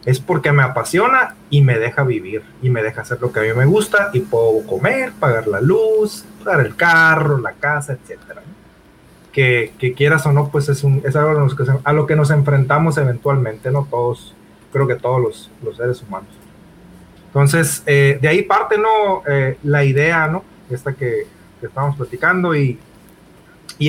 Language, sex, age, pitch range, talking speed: Spanish, male, 30-49, 135-165 Hz, 180 wpm